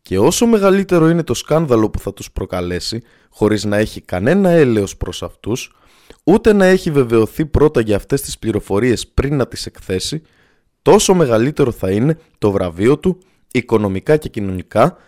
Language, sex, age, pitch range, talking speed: Greek, male, 20-39, 100-155 Hz, 160 wpm